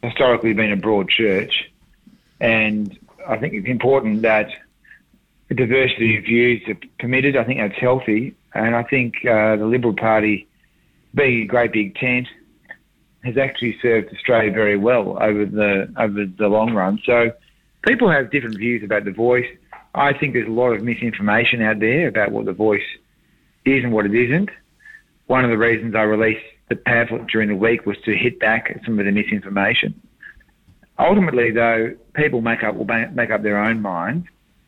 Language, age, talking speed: English, 40-59, 175 wpm